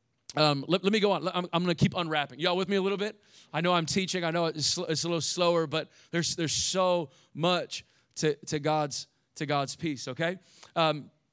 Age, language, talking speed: 40-59, English, 230 wpm